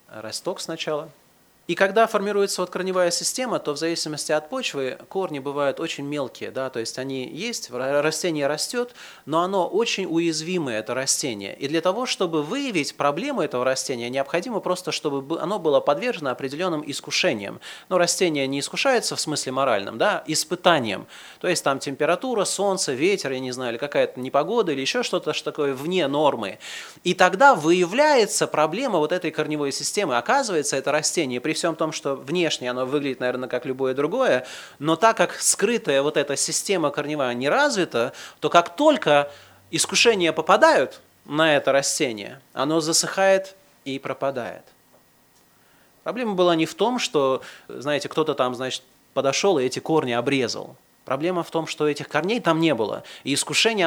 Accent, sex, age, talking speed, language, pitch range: native, male, 30-49, 160 wpm, Russian, 140-185 Hz